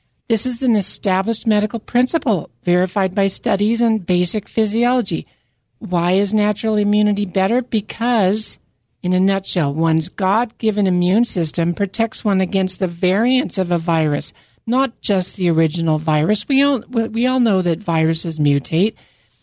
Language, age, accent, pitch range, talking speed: English, 60-79, American, 170-220 Hz, 140 wpm